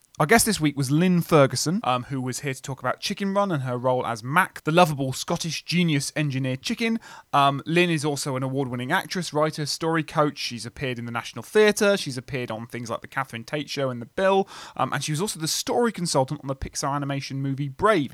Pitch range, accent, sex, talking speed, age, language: 125-160 Hz, British, male, 230 wpm, 30-49, English